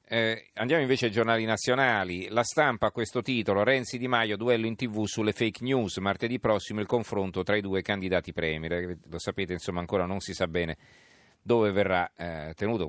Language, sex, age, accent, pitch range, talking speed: Italian, male, 40-59, native, 95-115 Hz, 190 wpm